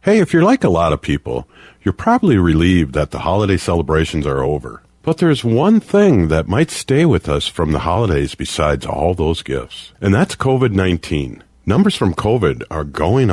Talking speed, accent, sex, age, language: 185 wpm, American, male, 50-69, English